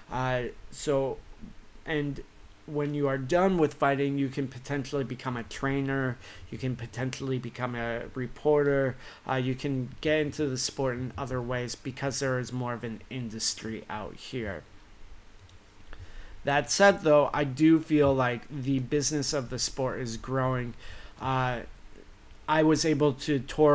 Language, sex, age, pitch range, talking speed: English, male, 30-49, 125-145 Hz, 150 wpm